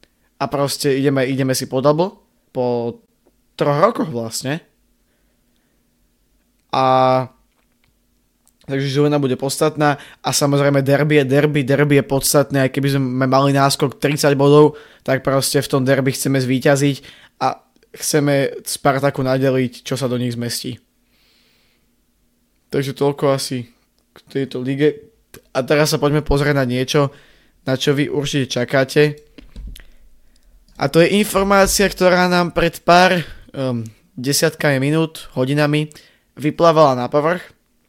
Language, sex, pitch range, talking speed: Slovak, male, 130-150 Hz, 125 wpm